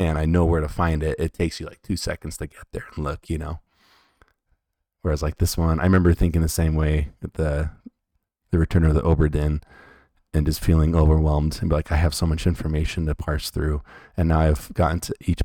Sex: male